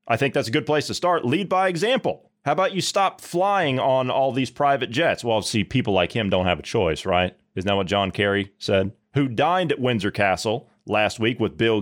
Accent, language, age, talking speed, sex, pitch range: American, English, 30-49, 235 wpm, male, 105-145 Hz